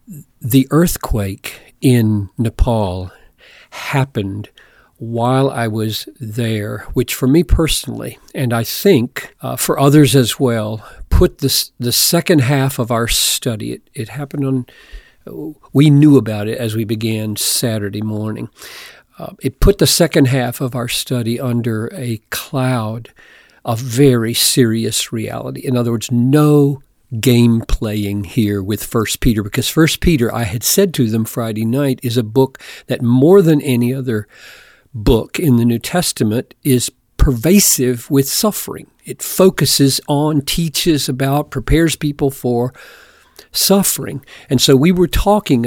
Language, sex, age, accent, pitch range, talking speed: English, male, 50-69, American, 115-145 Hz, 140 wpm